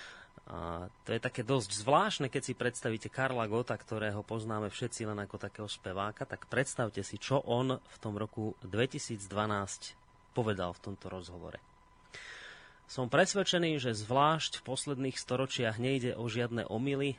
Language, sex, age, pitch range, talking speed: Slovak, male, 30-49, 105-125 Hz, 145 wpm